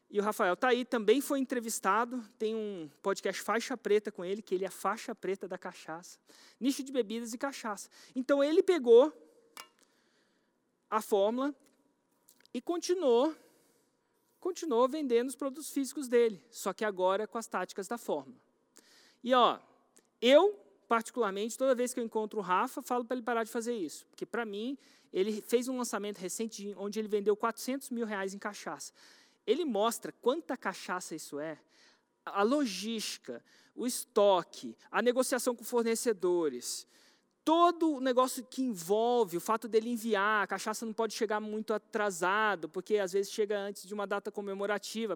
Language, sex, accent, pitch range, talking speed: Portuguese, male, Brazilian, 205-260 Hz, 160 wpm